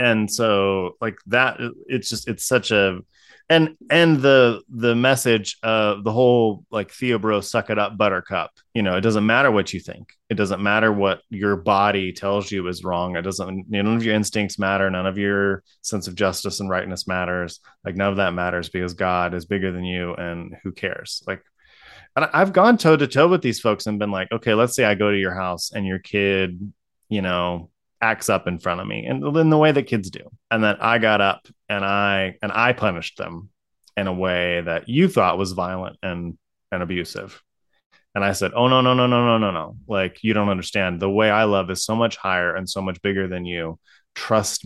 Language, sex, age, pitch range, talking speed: English, male, 20-39, 95-120 Hz, 220 wpm